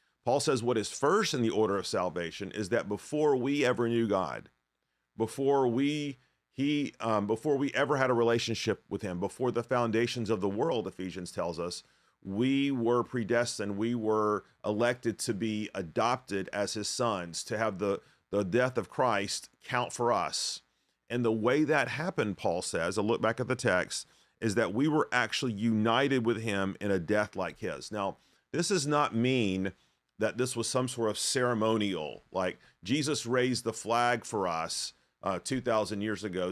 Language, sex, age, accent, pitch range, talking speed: English, male, 40-59, American, 95-125 Hz, 180 wpm